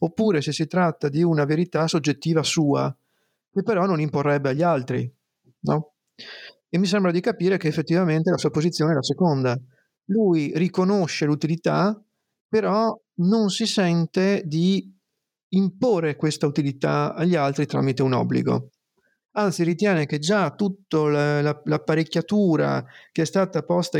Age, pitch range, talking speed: 50-69, 145-185 Hz, 135 wpm